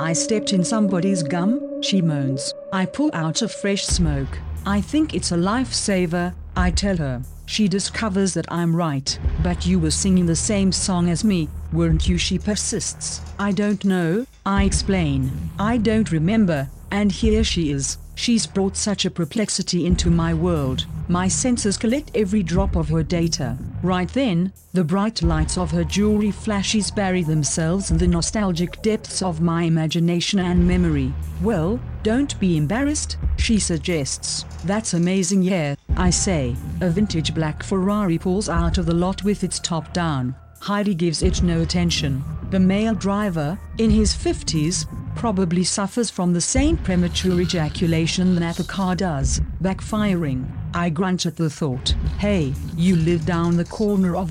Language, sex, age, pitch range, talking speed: English, female, 50-69, 160-200 Hz, 160 wpm